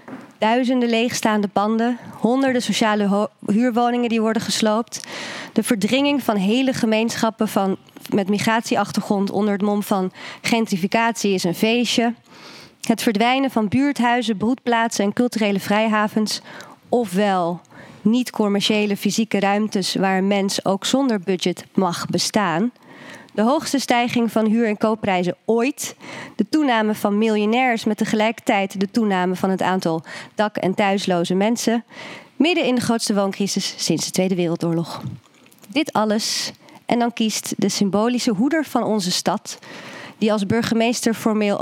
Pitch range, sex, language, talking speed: 200-240 Hz, female, Dutch, 135 wpm